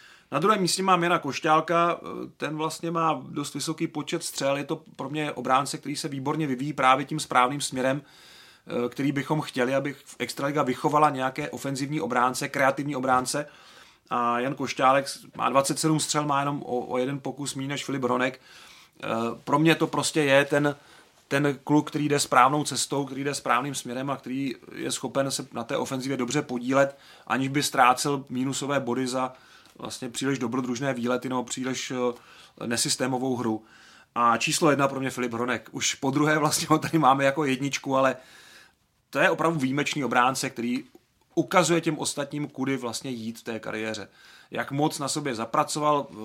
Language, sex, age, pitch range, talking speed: Czech, male, 30-49, 130-150 Hz, 170 wpm